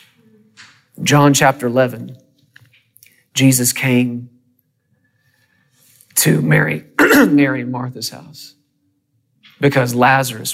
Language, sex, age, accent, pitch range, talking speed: English, male, 40-59, American, 125-155 Hz, 75 wpm